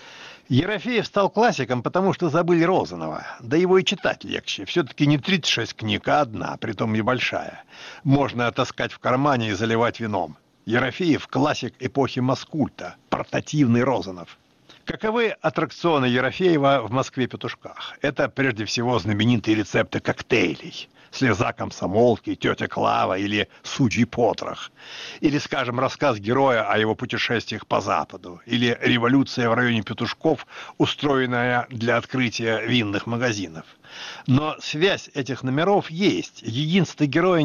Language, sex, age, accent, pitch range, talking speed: Russian, male, 60-79, native, 115-150 Hz, 125 wpm